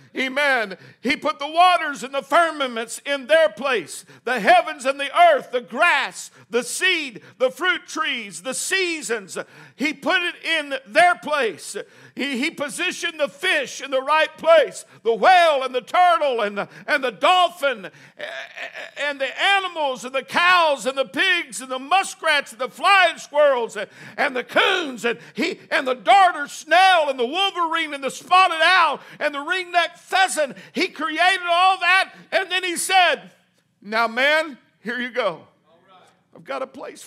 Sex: male